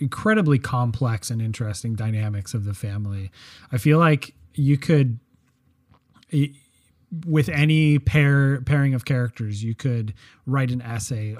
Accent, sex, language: American, male, English